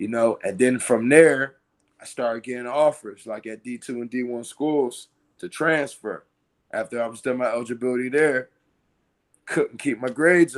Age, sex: 20-39, male